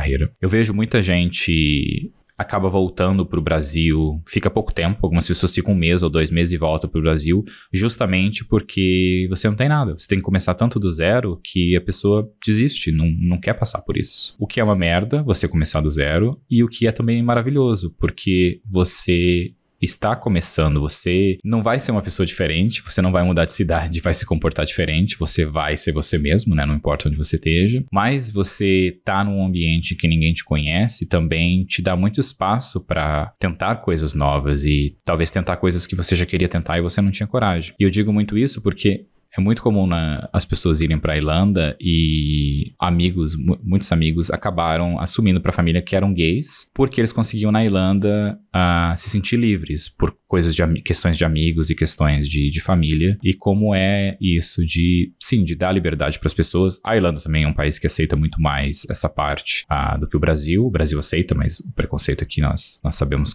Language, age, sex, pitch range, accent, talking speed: Portuguese, 20-39, male, 80-100 Hz, Brazilian, 205 wpm